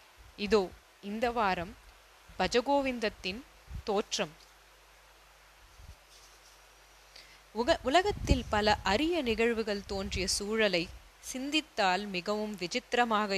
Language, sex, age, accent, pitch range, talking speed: Tamil, female, 20-39, native, 190-245 Hz, 65 wpm